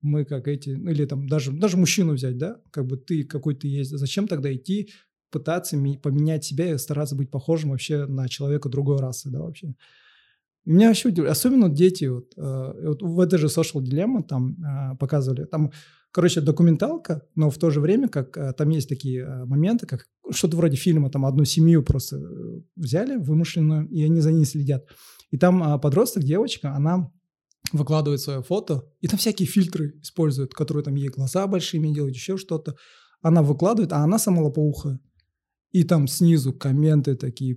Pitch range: 140-165 Hz